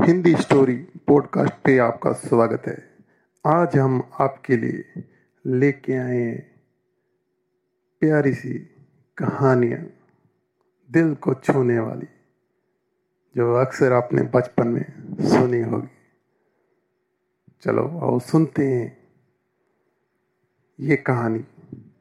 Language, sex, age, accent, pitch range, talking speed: Hindi, male, 50-69, native, 125-150 Hz, 90 wpm